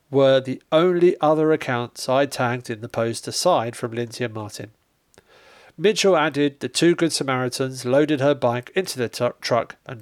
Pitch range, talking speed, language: 120-155 Hz, 175 wpm, English